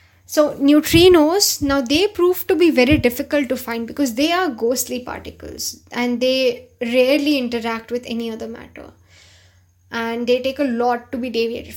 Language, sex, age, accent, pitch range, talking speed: English, female, 10-29, Indian, 230-295 Hz, 165 wpm